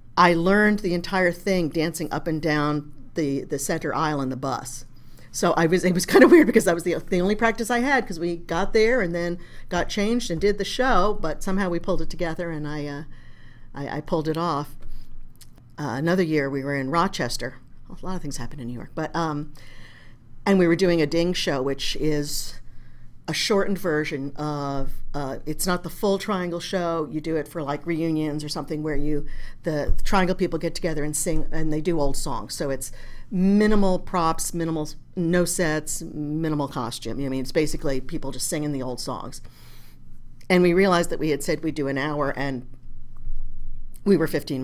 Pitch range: 140-175 Hz